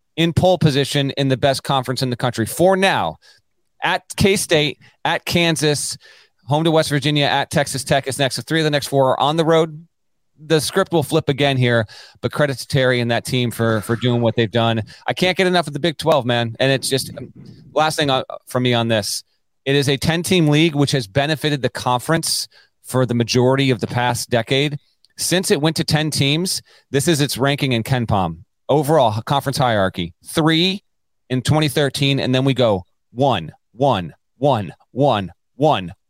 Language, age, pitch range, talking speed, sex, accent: English, 30-49, 125-155 Hz, 195 wpm, male, American